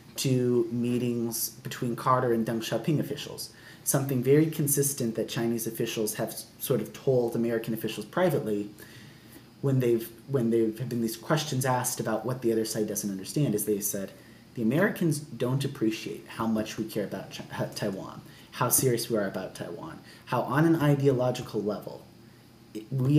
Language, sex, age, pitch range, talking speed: English, male, 30-49, 115-140 Hz, 165 wpm